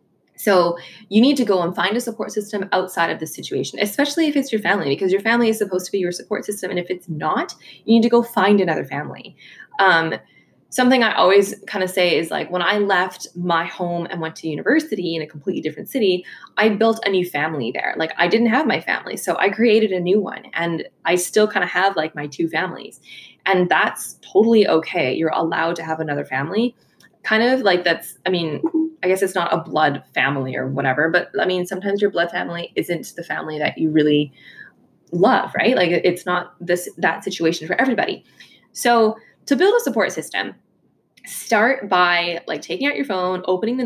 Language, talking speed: English, 210 wpm